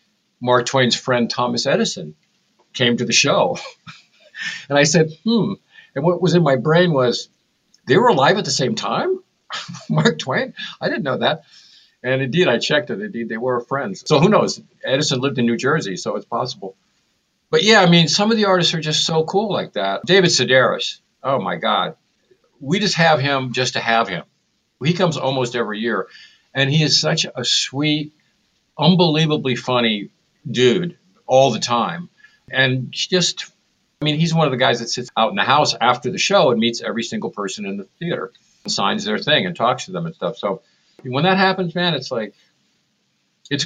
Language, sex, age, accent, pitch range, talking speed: English, male, 50-69, American, 120-175 Hz, 195 wpm